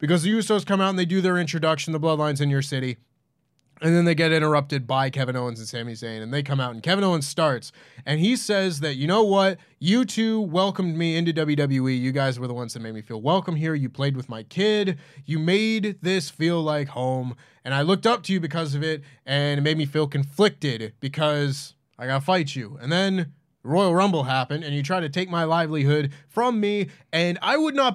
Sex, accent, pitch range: male, American, 135-180 Hz